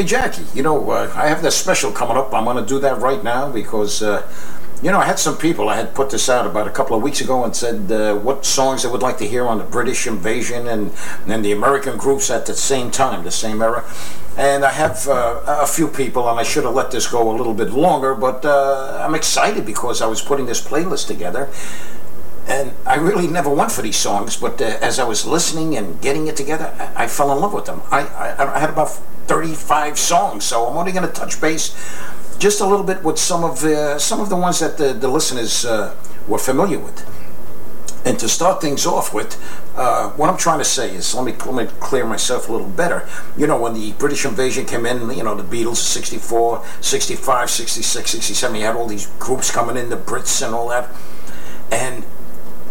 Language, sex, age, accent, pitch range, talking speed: English, male, 60-79, American, 110-140 Hz, 230 wpm